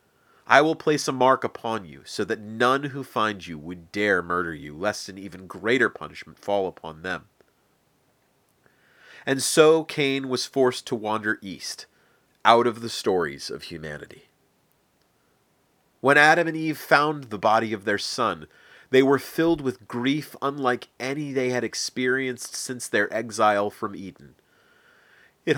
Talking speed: 155 wpm